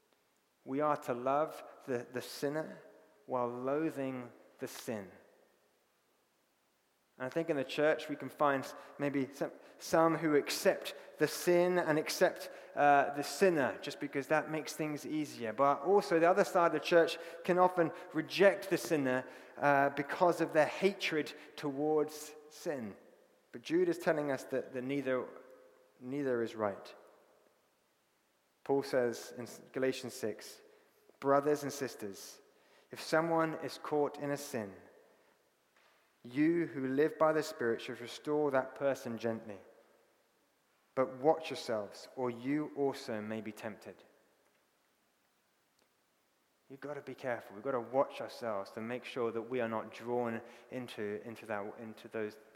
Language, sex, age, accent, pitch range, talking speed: English, male, 30-49, British, 120-155 Hz, 145 wpm